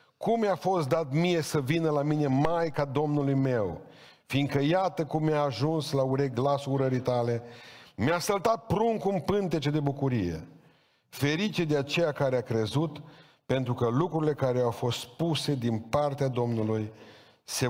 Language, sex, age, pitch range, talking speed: Romanian, male, 50-69, 120-150 Hz, 160 wpm